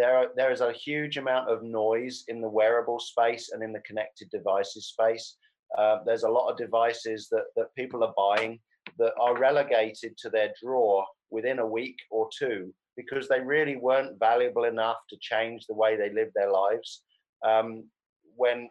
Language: English